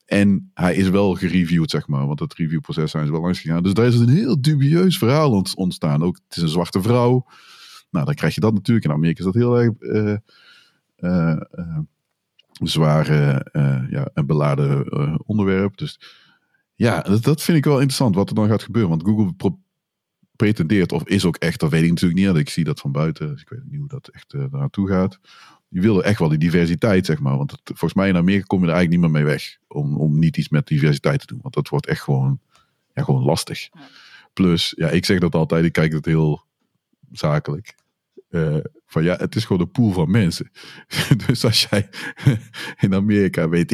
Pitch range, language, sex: 80-115 Hz, Dutch, male